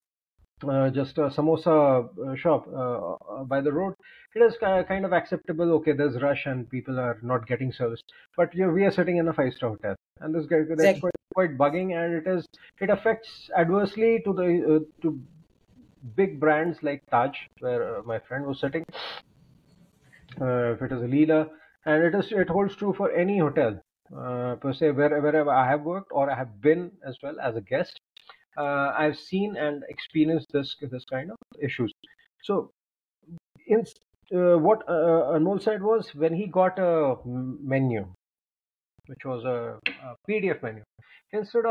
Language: Hindi